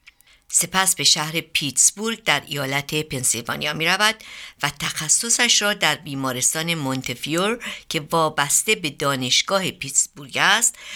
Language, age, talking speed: Persian, 60-79, 110 wpm